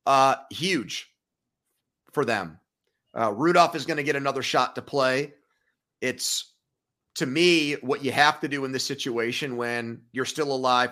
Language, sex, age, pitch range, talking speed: English, male, 30-49, 120-150 Hz, 160 wpm